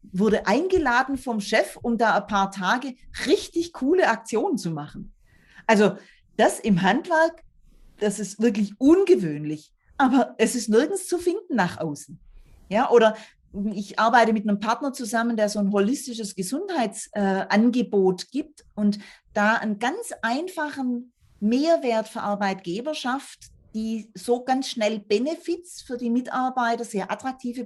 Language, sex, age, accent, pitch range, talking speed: German, female, 40-59, German, 205-265 Hz, 135 wpm